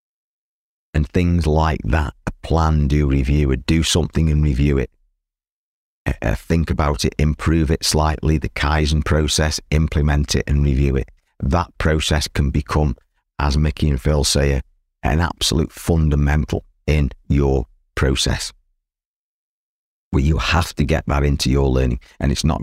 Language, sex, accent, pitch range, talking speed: English, male, British, 70-80 Hz, 155 wpm